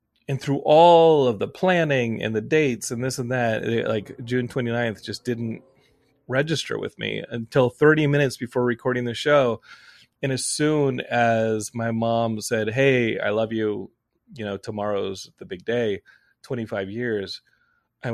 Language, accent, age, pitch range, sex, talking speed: English, American, 30-49, 115-155 Hz, male, 160 wpm